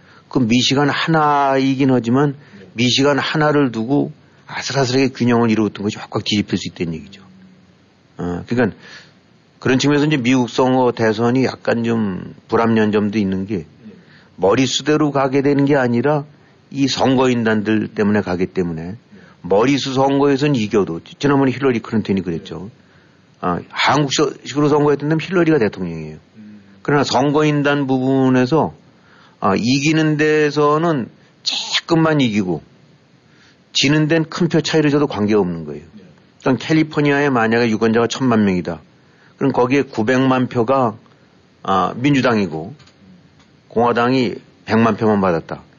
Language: Korean